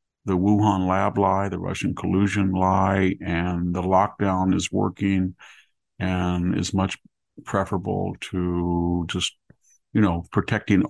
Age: 50-69